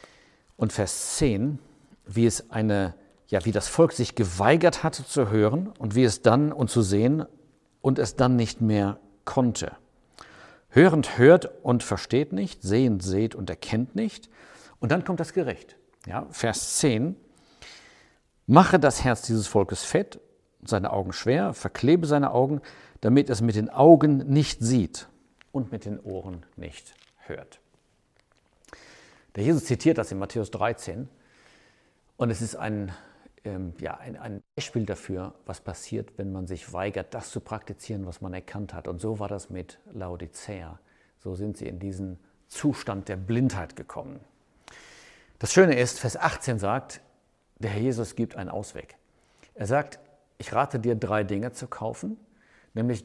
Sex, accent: male, German